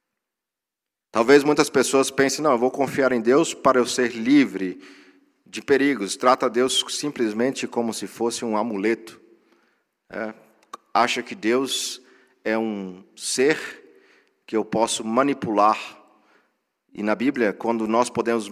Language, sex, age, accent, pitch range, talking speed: Portuguese, male, 50-69, Brazilian, 105-125 Hz, 135 wpm